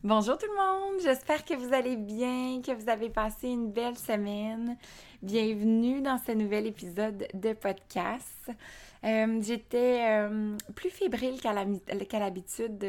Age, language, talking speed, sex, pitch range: 20-39, French, 150 wpm, female, 180-220 Hz